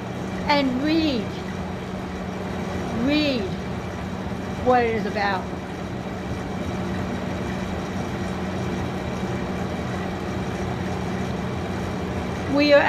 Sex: female